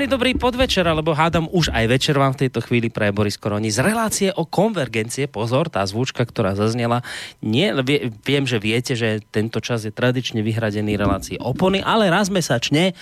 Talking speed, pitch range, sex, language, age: 170 wpm, 110-155 Hz, male, Slovak, 30-49